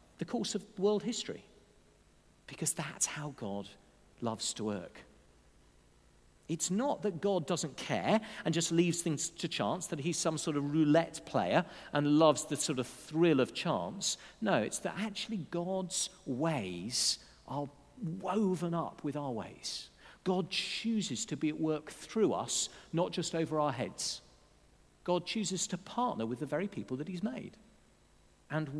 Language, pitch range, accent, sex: English, 125-185 Hz, British, male